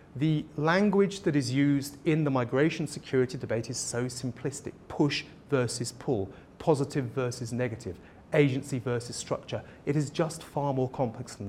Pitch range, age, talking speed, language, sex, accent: 120-160 Hz, 40-59, 150 wpm, English, male, British